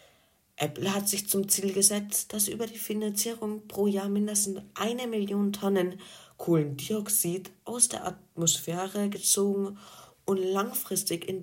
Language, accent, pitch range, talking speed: German, German, 165-200 Hz, 125 wpm